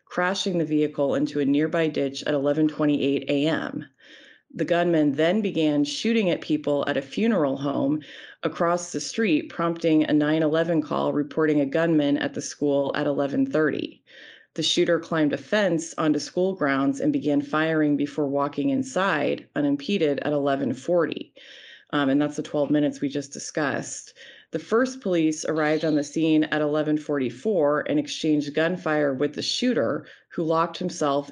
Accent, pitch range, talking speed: American, 145-170 Hz, 155 wpm